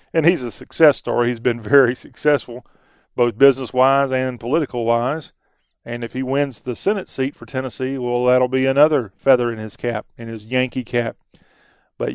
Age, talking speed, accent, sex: 40-59, 185 wpm, American, male